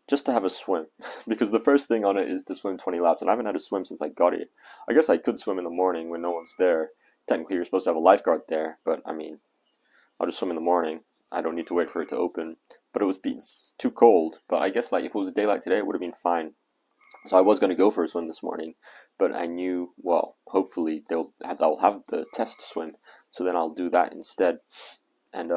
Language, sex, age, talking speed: English, male, 20-39, 265 wpm